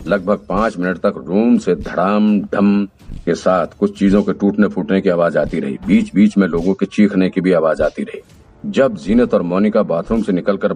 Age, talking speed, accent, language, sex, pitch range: 50-69, 205 wpm, native, Hindi, male, 85-100 Hz